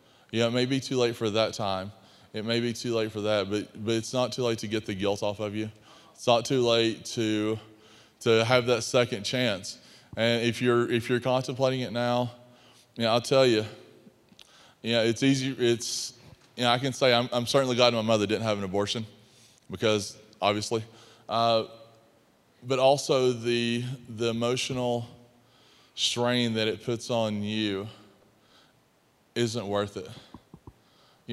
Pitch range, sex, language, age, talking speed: 105-120 Hz, male, English, 20-39, 175 wpm